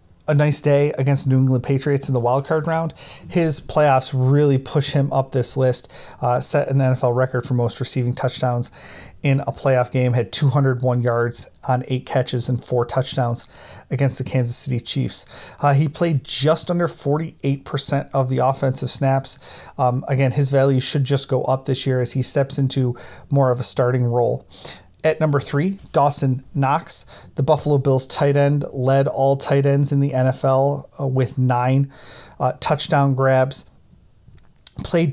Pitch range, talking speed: 130-145 Hz, 170 wpm